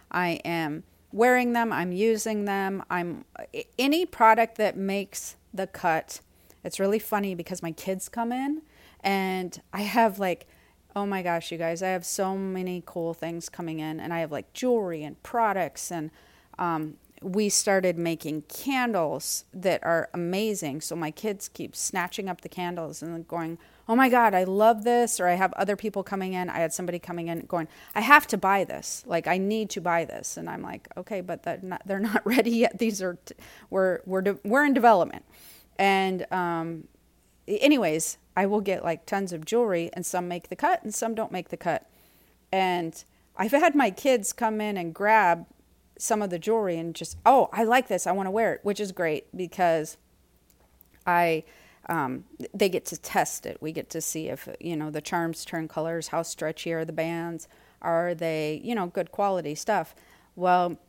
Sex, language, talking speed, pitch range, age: female, English, 190 wpm, 165-210 Hz, 40-59